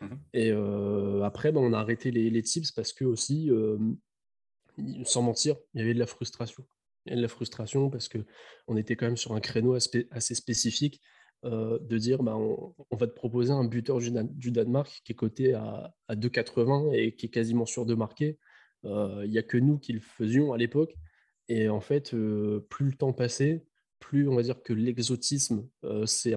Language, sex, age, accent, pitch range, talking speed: English, male, 20-39, French, 110-130 Hz, 200 wpm